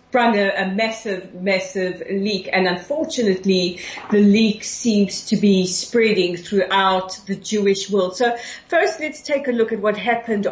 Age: 40-59